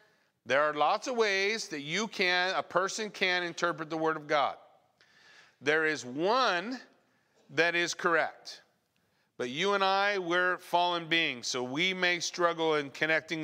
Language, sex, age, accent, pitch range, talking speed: English, male, 40-59, American, 135-165 Hz, 155 wpm